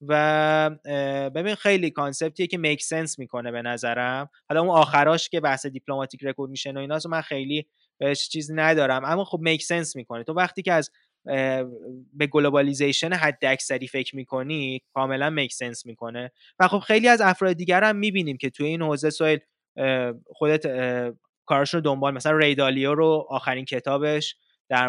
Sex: male